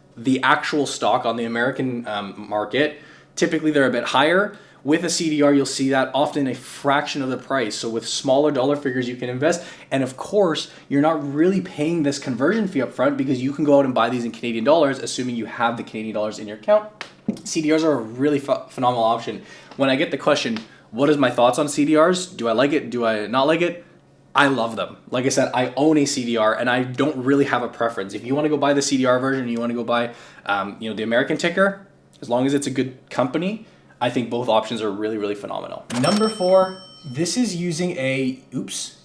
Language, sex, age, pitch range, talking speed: English, male, 20-39, 120-155 Hz, 230 wpm